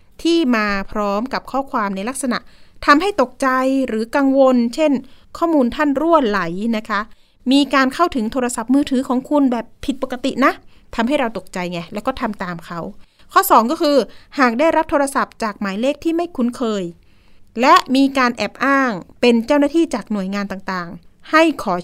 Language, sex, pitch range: Thai, female, 210-275 Hz